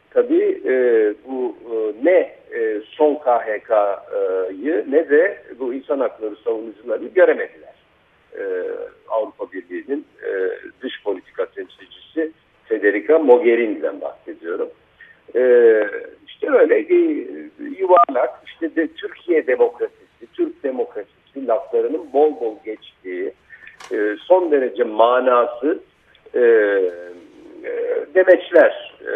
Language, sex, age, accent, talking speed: Turkish, male, 60-79, native, 80 wpm